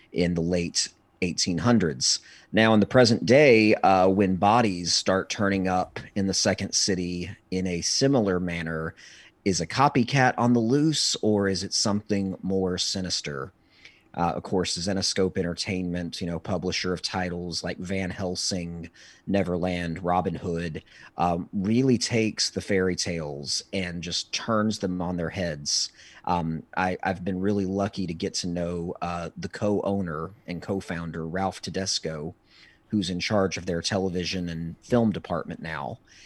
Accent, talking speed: American, 150 wpm